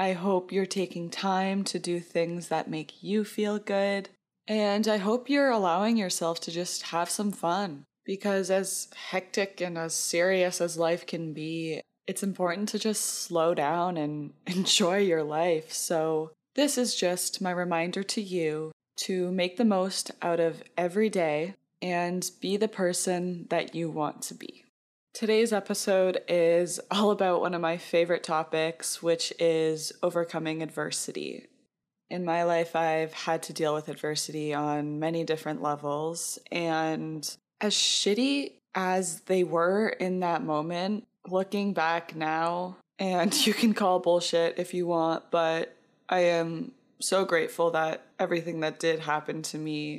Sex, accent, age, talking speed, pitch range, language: female, American, 20-39, 155 wpm, 165-195 Hz, English